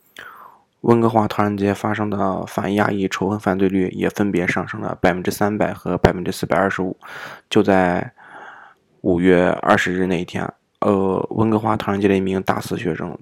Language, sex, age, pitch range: Chinese, male, 20-39, 95-110 Hz